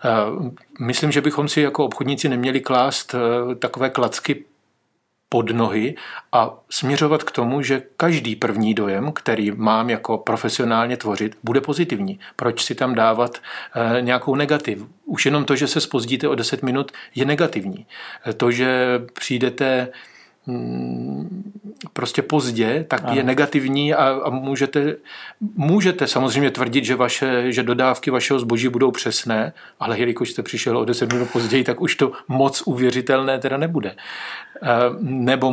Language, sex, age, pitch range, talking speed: Czech, male, 40-59, 120-145 Hz, 135 wpm